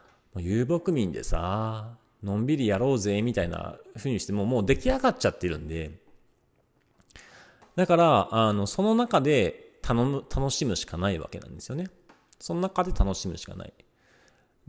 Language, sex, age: Japanese, male, 40-59